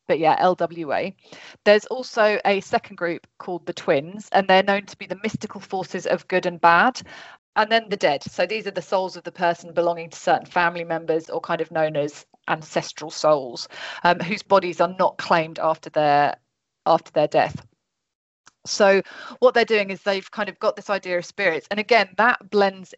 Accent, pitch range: British, 170-200 Hz